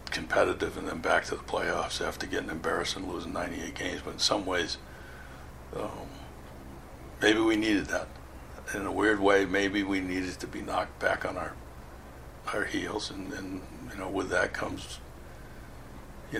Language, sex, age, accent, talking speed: English, male, 60-79, American, 170 wpm